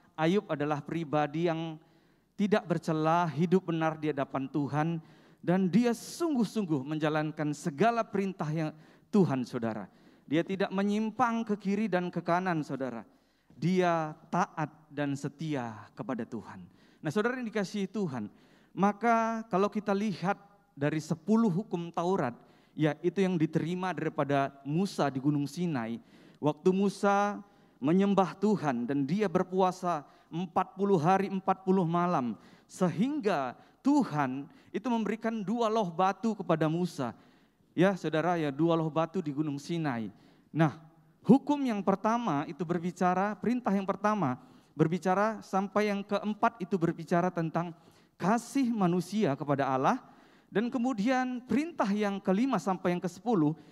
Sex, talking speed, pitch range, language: male, 130 wpm, 155-205 Hz, Indonesian